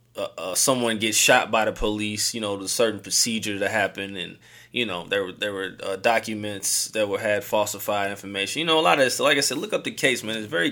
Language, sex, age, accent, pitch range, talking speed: English, male, 20-39, American, 105-125 Hz, 250 wpm